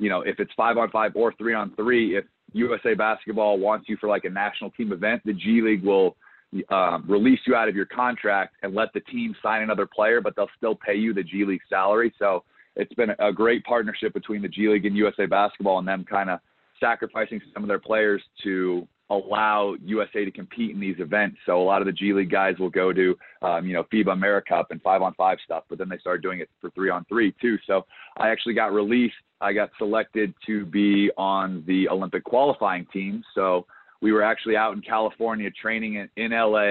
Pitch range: 95-110 Hz